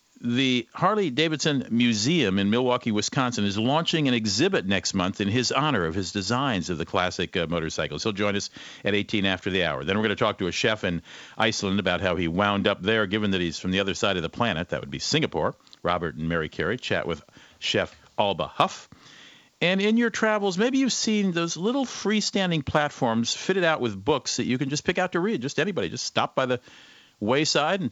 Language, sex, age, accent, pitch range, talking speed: English, male, 50-69, American, 100-165 Hz, 215 wpm